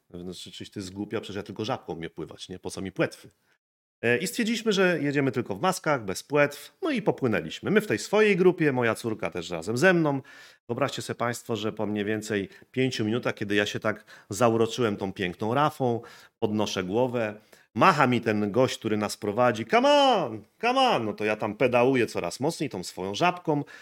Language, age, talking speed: Polish, 40-59, 200 wpm